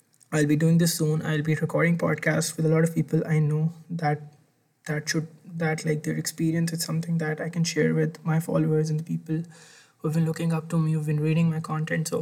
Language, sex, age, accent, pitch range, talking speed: English, male, 20-39, Indian, 155-170 Hz, 230 wpm